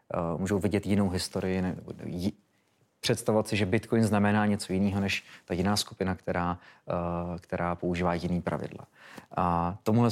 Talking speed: 135 wpm